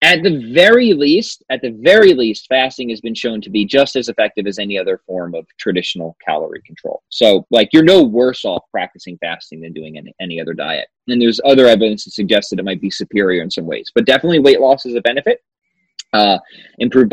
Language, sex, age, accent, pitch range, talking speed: English, male, 20-39, American, 100-130 Hz, 215 wpm